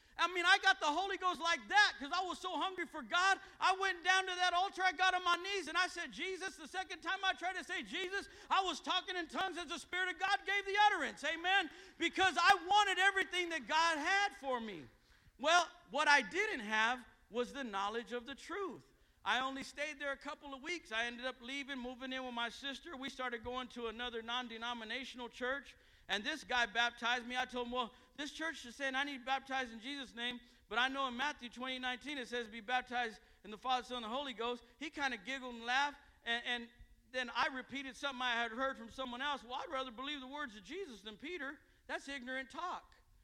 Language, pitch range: English, 225-315 Hz